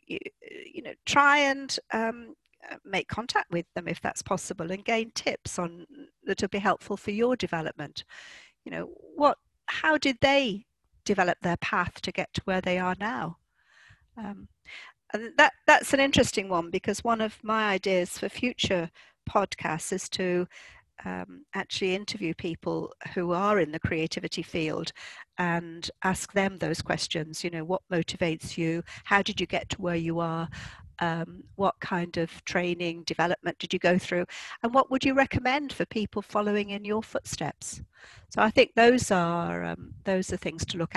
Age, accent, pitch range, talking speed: 50-69, British, 170-225 Hz, 170 wpm